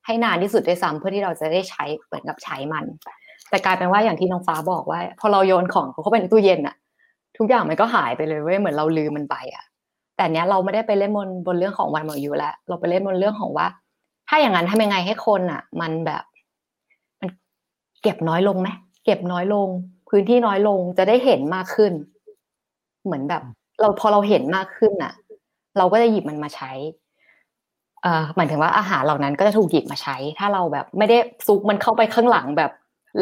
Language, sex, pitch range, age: Thai, female, 170-220 Hz, 20-39